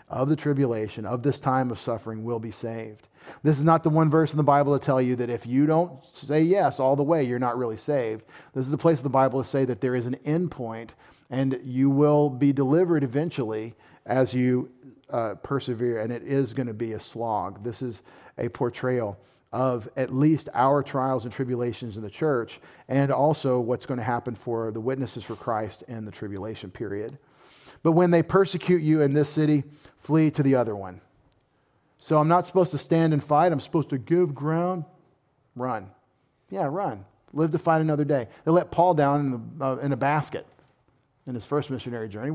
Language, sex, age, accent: English, male, 40-59, American